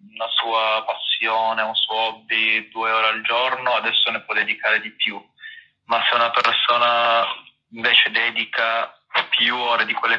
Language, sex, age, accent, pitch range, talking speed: Italian, male, 20-39, native, 110-145 Hz, 155 wpm